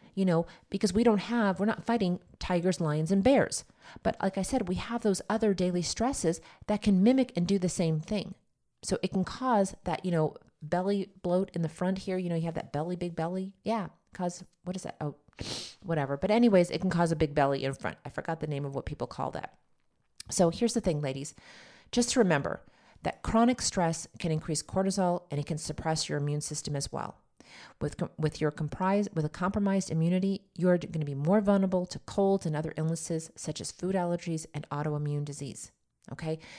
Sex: female